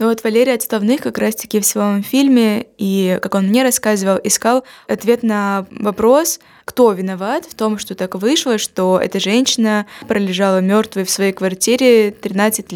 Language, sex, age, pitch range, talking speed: Russian, female, 20-39, 195-225 Hz, 165 wpm